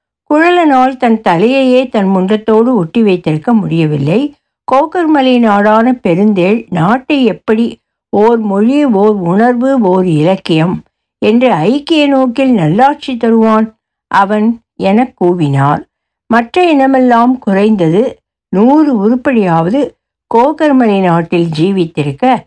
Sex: female